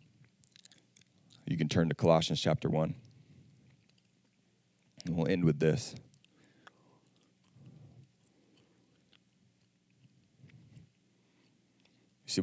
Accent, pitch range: American, 80-105 Hz